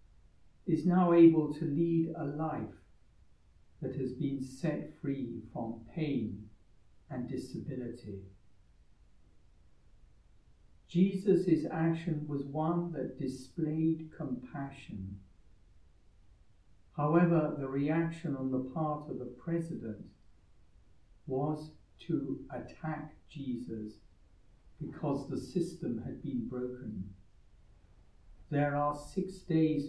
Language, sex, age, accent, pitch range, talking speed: English, male, 60-79, British, 105-155 Hz, 90 wpm